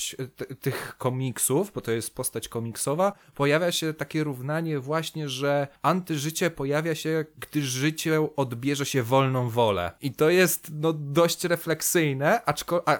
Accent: native